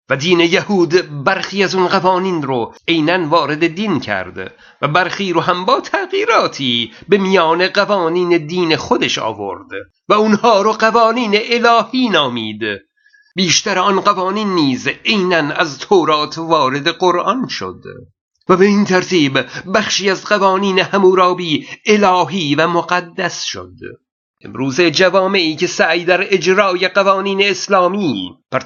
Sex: male